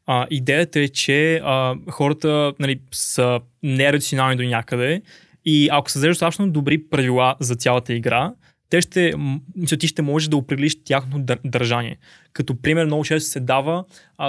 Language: Bulgarian